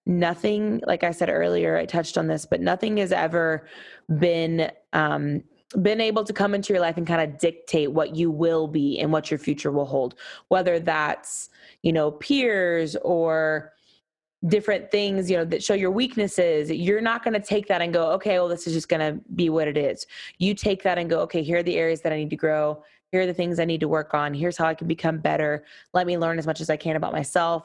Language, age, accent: English, 20-39, American